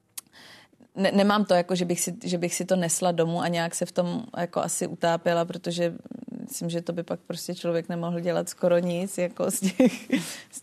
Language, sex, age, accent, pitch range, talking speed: Czech, female, 20-39, native, 170-180 Hz, 205 wpm